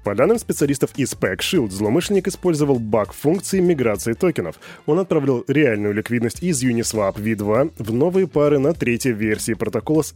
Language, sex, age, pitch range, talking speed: Russian, male, 20-39, 110-145 Hz, 160 wpm